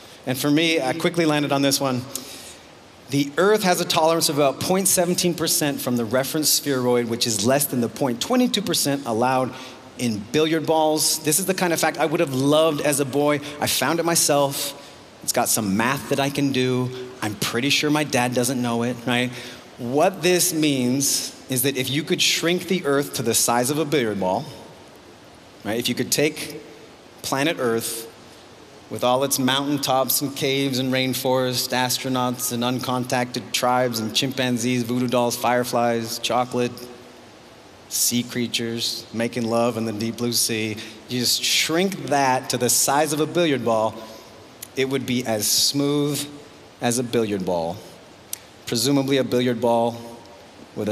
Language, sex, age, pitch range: Korean, male, 30-49, 120-145 Hz